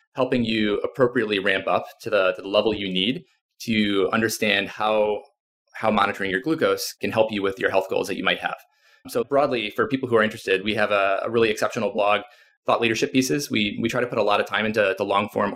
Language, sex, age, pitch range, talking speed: English, male, 20-39, 100-130 Hz, 230 wpm